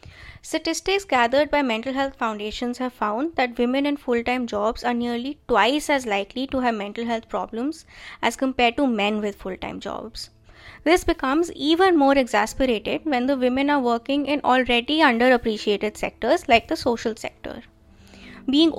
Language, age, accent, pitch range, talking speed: Hindi, 20-39, native, 230-295 Hz, 155 wpm